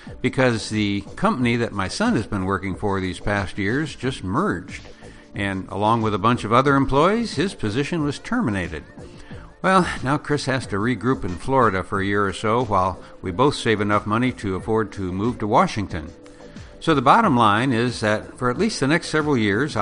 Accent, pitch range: American, 100-135 Hz